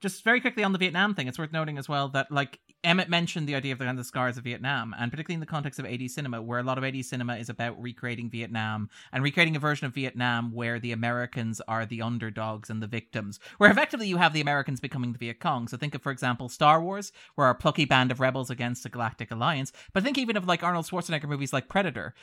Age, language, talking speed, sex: 30-49, English, 250 wpm, male